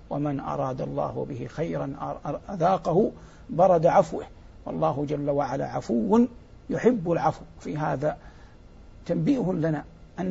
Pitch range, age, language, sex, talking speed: 145-170 Hz, 60-79, English, male, 110 wpm